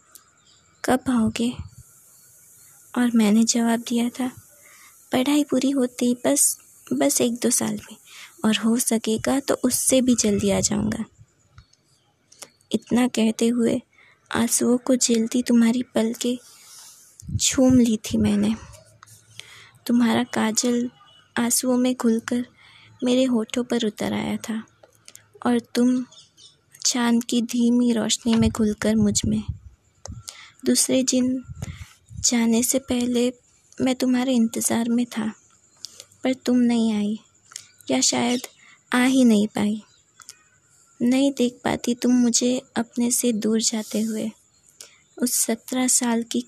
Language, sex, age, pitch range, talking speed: Hindi, female, 20-39, 215-250 Hz, 120 wpm